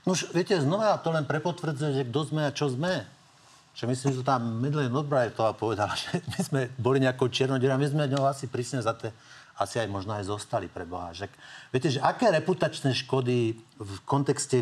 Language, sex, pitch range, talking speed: Slovak, male, 115-150 Hz, 200 wpm